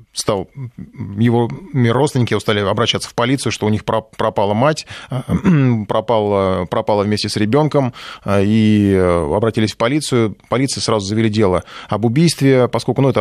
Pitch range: 105-125 Hz